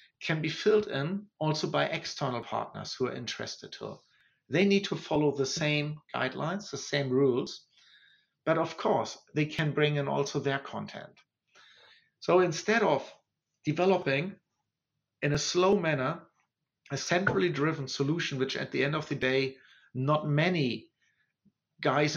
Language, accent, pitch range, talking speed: English, German, 140-175 Hz, 145 wpm